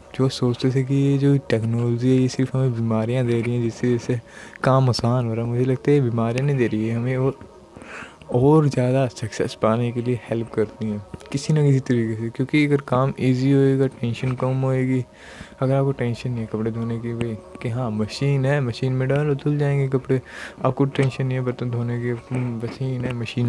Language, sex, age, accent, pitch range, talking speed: Hindi, male, 20-39, native, 115-135 Hz, 215 wpm